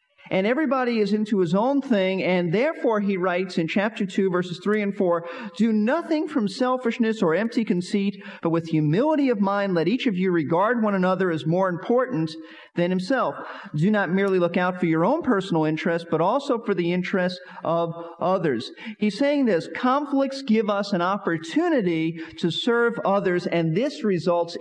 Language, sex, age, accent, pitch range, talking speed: English, male, 50-69, American, 180-245 Hz, 180 wpm